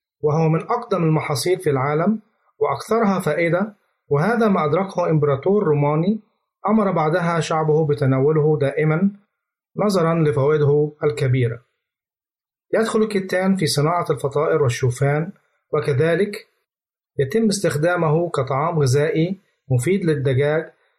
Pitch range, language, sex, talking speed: 145-190 Hz, Arabic, male, 95 wpm